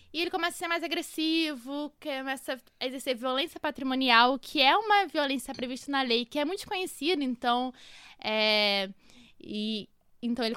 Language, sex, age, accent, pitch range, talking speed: Portuguese, female, 10-29, Brazilian, 210-280 Hz, 160 wpm